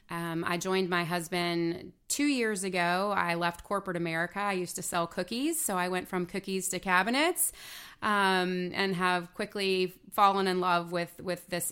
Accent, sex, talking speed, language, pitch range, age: American, female, 175 wpm, English, 165-195 Hz, 30-49